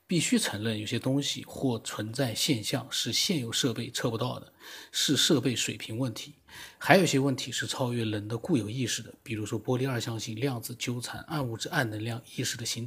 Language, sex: Chinese, male